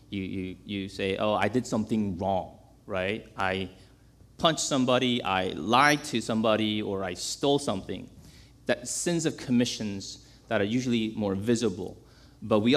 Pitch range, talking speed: 105-145 Hz, 150 wpm